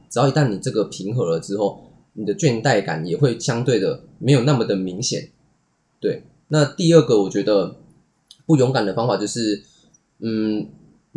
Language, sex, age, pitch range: Chinese, male, 20-39, 105-145 Hz